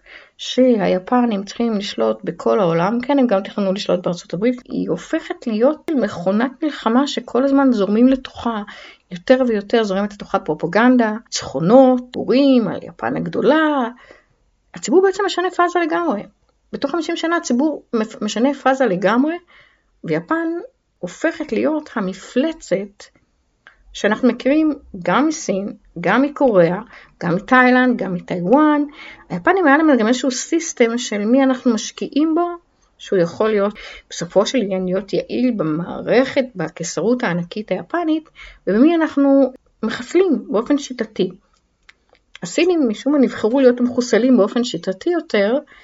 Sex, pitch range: female, 205-280 Hz